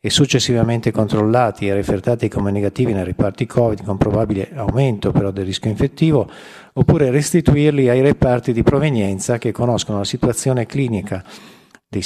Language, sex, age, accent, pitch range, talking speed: Italian, male, 50-69, native, 105-135 Hz, 140 wpm